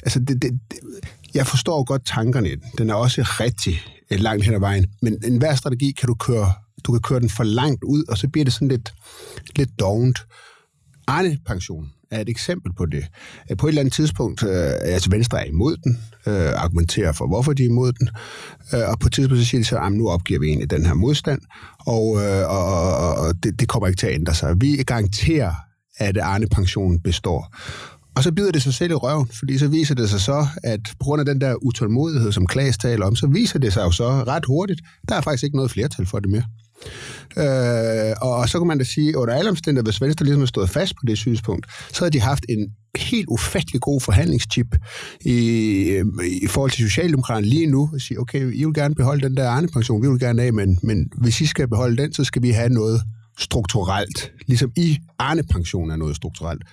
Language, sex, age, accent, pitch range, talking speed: Danish, male, 30-49, native, 105-135 Hz, 220 wpm